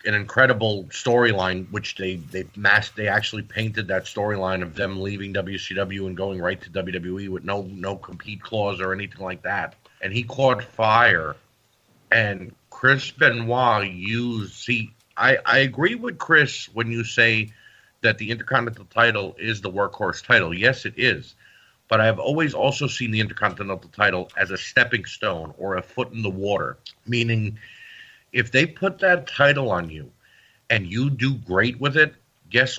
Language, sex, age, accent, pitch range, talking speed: English, male, 50-69, American, 100-130 Hz, 165 wpm